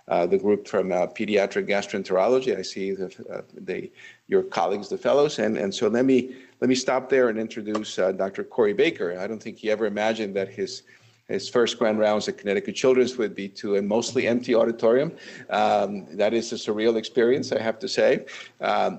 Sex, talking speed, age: male, 200 wpm, 50-69